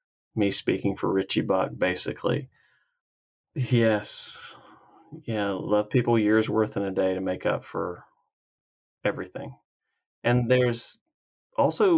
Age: 30-49